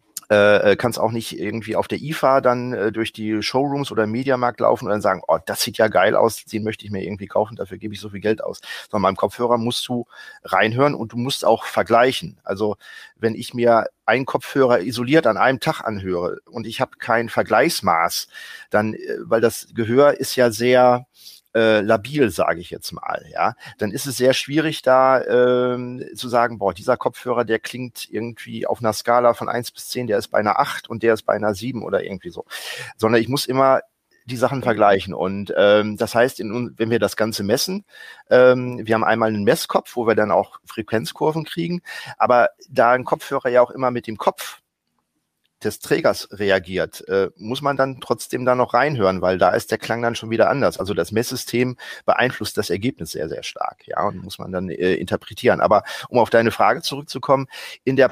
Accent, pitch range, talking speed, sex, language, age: German, 110-130 Hz, 200 wpm, male, German, 40-59